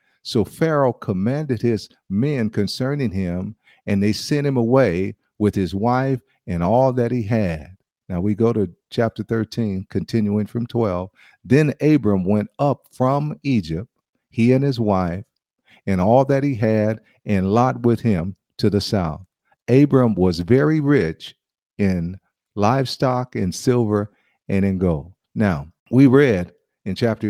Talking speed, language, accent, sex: 145 wpm, English, American, male